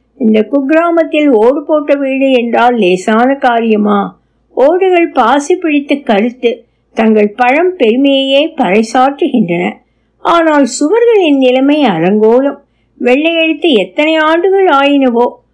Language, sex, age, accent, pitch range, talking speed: Tamil, female, 60-79, native, 220-305 Hz, 45 wpm